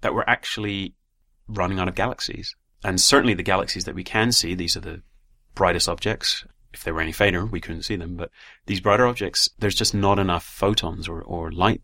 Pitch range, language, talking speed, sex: 85-105 Hz, English, 210 wpm, male